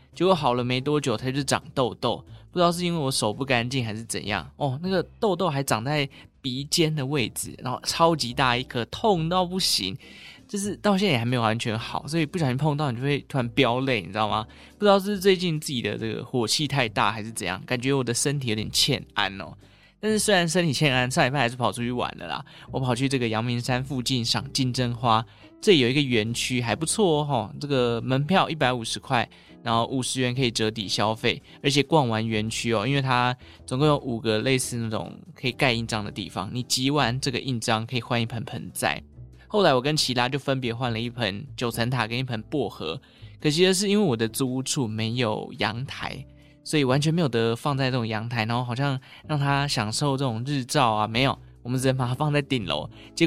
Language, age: Chinese, 20-39